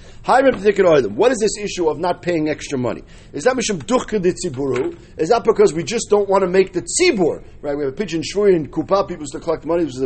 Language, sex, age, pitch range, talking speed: English, male, 40-59, 155-240 Hz, 215 wpm